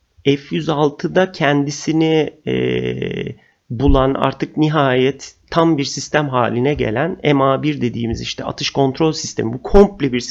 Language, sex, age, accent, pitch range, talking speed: Turkish, male, 40-59, native, 130-165 Hz, 120 wpm